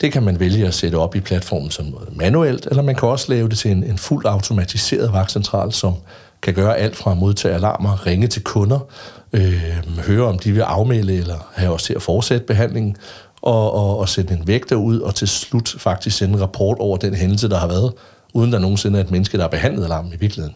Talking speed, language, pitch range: 230 wpm, Danish, 90-110 Hz